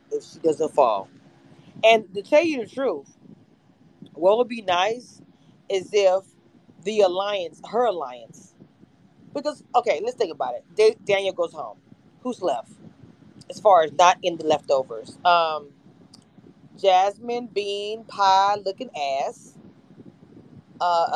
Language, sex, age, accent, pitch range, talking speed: English, female, 30-49, American, 190-250 Hz, 125 wpm